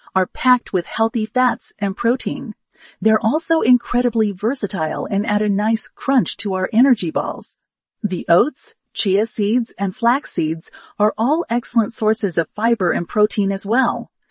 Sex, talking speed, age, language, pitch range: female, 155 wpm, 40-59, English, 195-240 Hz